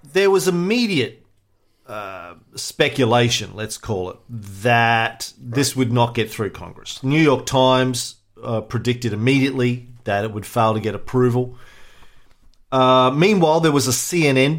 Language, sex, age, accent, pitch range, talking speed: English, male, 40-59, Australian, 105-125 Hz, 140 wpm